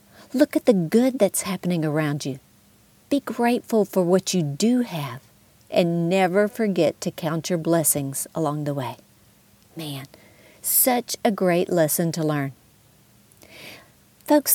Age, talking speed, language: 50-69, 135 wpm, English